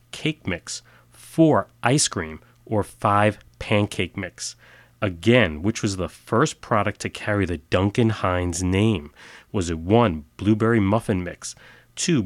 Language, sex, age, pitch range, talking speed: English, male, 30-49, 90-120 Hz, 135 wpm